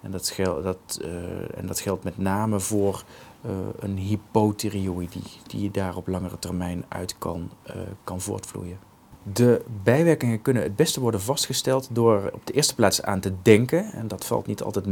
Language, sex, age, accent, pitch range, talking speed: Dutch, male, 40-59, Dutch, 95-110 Hz, 180 wpm